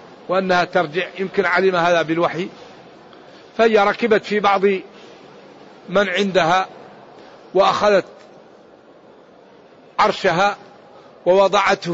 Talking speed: 75 wpm